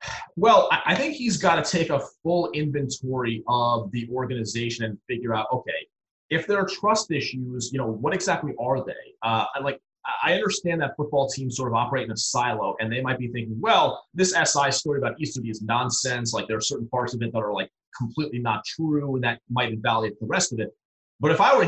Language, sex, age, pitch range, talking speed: English, male, 30-49, 120-155 Hz, 220 wpm